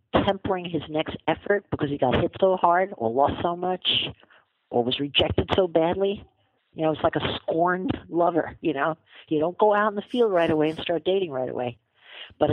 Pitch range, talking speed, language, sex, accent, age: 150-185 Hz, 205 wpm, English, female, American, 50-69